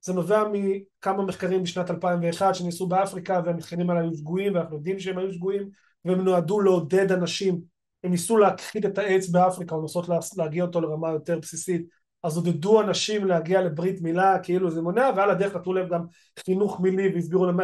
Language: Hebrew